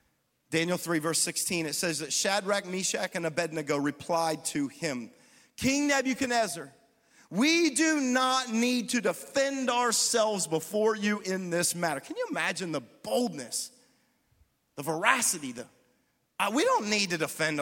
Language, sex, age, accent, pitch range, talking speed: English, male, 40-59, American, 180-255 Hz, 140 wpm